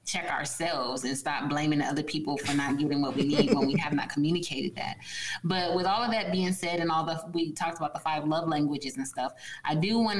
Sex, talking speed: female, 240 wpm